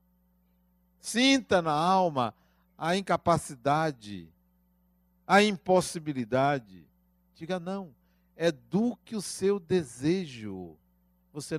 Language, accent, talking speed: Portuguese, Brazilian, 70 wpm